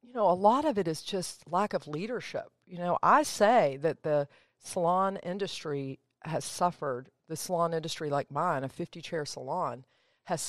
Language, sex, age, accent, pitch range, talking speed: English, female, 50-69, American, 150-180 Hz, 170 wpm